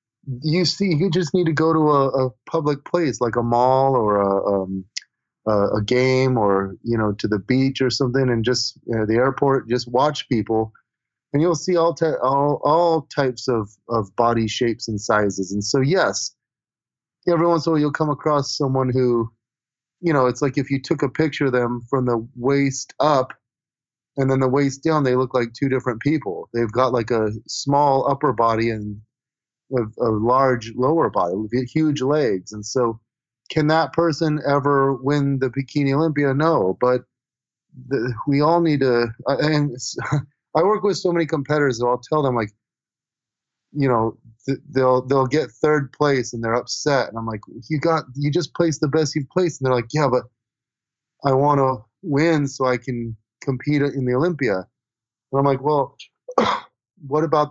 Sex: male